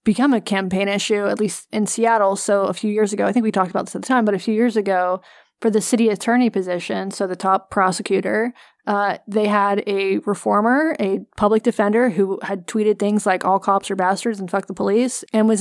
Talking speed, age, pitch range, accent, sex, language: 225 wpm, 20-39, 200-245 Hz, American, female, English